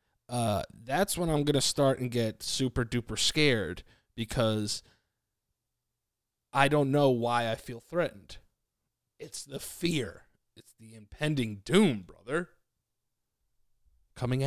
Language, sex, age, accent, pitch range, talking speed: English, male, 20-39, American, 110-130 Hz, 120 wpm